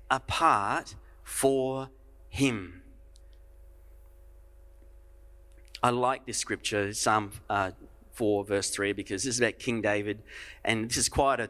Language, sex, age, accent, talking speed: English, male, 30-49, Australian, 120 wpm